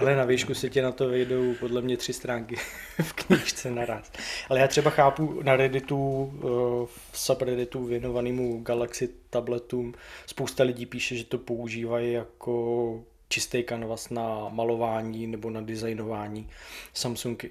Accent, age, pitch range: native, 20-39, 115-125 Hz